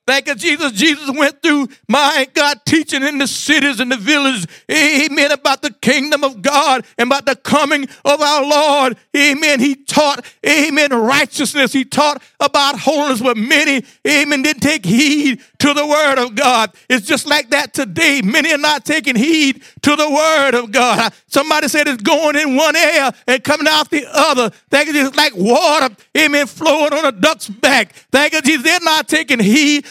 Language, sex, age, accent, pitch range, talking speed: English, male, 50-69, American, 265-300 Hz, 185 wpm